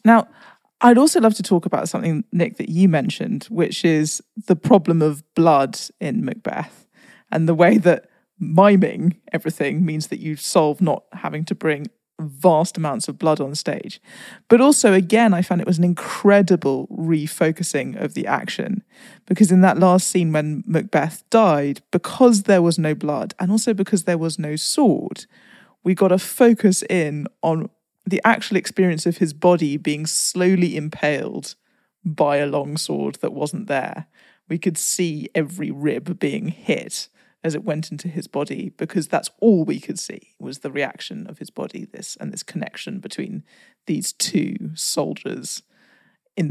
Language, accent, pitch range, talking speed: English, British, 160-205 Hz, 165 wpm